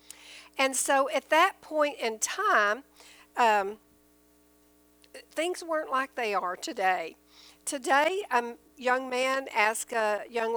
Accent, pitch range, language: American, 210-275 Hz, English